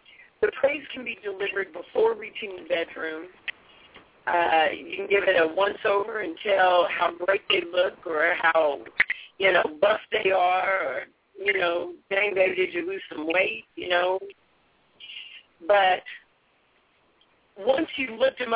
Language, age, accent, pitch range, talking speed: English, 50-69, American, 195-270 Hz, 150 wpm